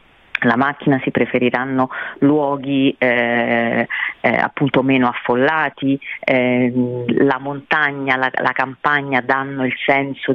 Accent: native